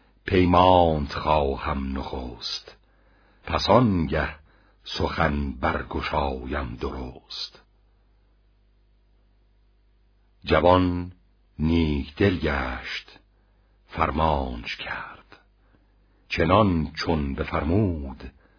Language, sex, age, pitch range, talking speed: Persian, male, 60-79, 80-100 Hz, 55 wpm